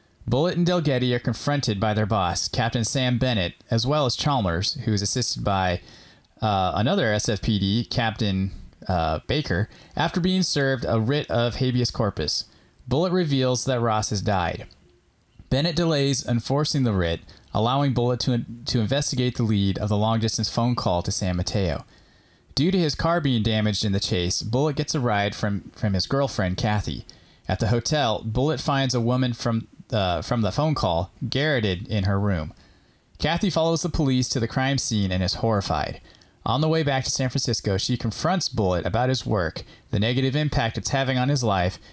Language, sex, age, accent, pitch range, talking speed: English, male, 20-39, American, 100-135 Hz, 180 wpm